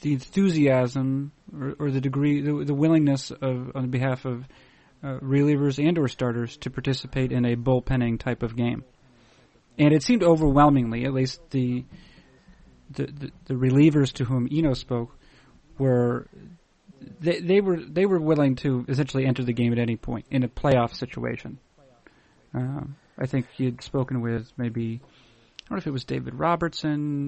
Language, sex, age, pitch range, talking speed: English, male, 30-49, 125-145 Hz, 165 wpm